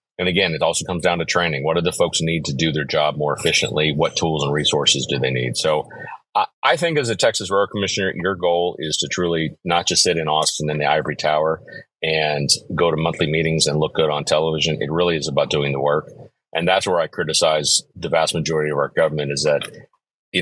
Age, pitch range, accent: 40-59, 75-90 Hz, American